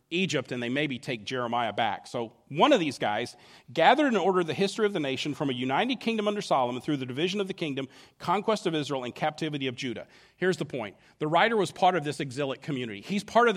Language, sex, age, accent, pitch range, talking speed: English, male, 40-59, American, 135-185 Hz, 235 wpm